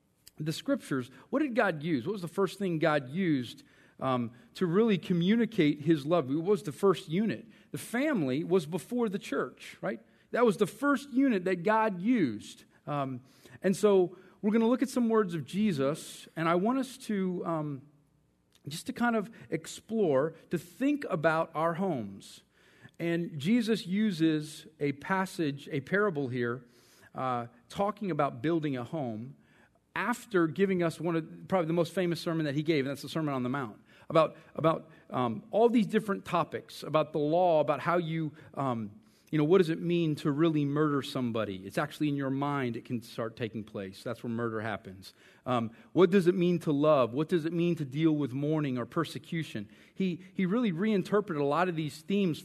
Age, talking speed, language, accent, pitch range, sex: 40-59, 190 wpm, English, American, 140-195 Hz, male